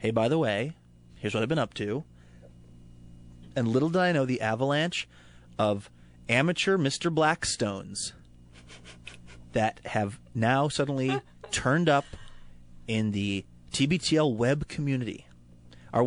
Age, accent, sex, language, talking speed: 30-49, American, male, English, 125 wpm